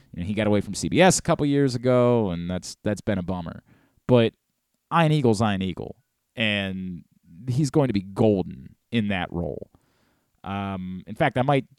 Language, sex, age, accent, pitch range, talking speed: English, male, 30-49, American, 95-125 Hz, 180 wpm